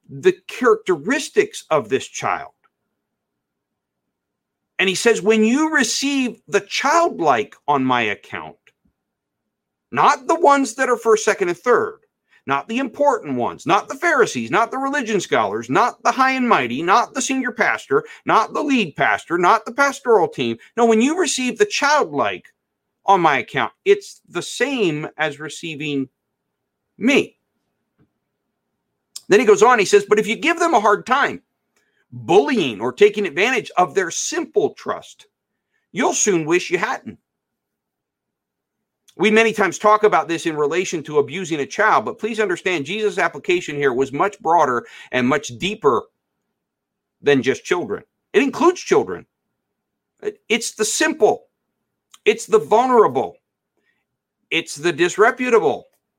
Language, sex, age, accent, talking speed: English, male, 50-69, American, 145 wpm